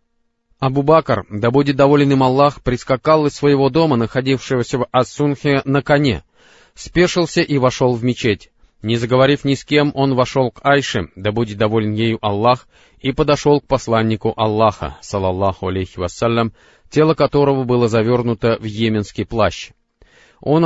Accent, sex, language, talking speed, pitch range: native, male, Russian, 145 wpm, 110-145 Hz